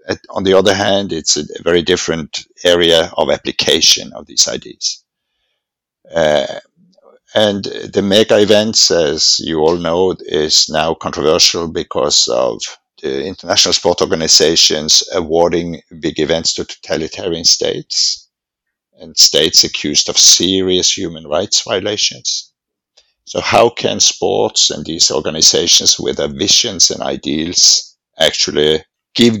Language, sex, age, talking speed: English, male, 50-69, 120 wpm